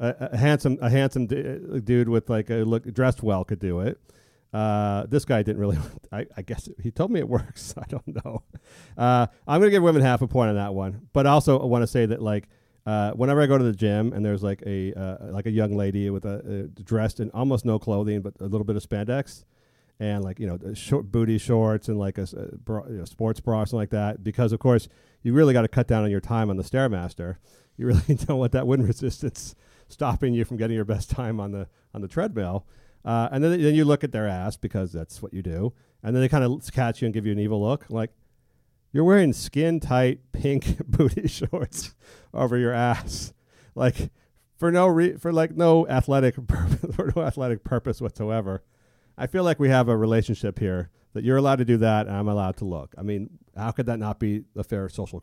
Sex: male